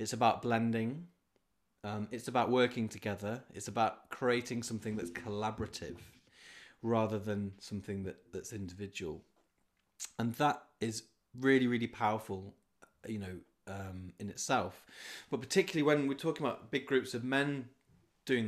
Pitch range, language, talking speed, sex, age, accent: 100-125 Hz, English, 135 wpm, male, 30-49, British